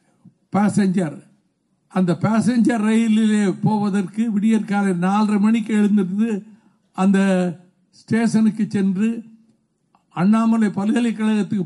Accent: native